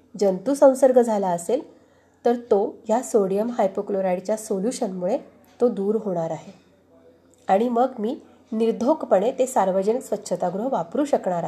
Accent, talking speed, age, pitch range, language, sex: native, 115 wpm, 30-49, 195-255 Hz, Marathi, female